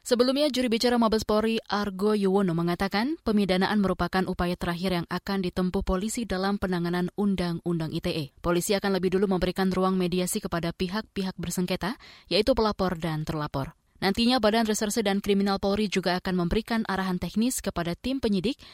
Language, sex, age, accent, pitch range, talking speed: Indonesian, female, 20-39, native, 180-215 Hz, 155 wpm